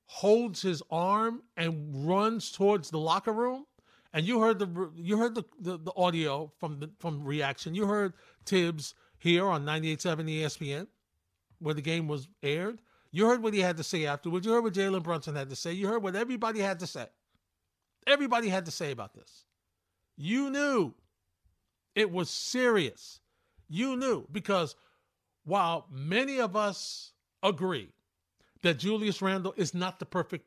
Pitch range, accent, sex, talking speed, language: 160-215 Hz, American, male, 165 wpm, English